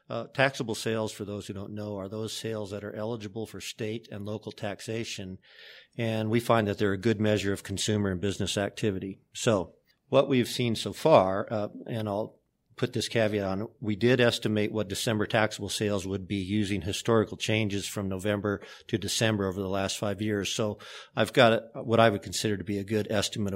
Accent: American